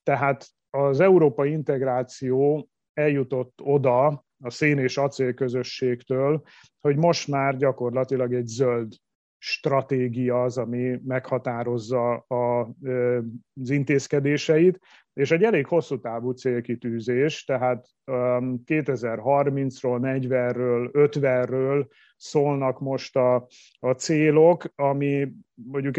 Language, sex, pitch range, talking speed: Hungarian, male, 125-140 Hz, 90 wpm